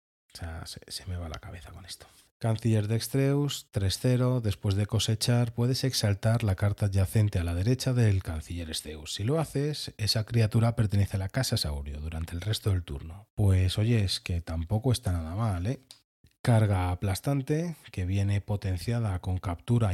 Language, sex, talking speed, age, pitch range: Spanish, male, 175 wpm, 30-49, 90-120 Hz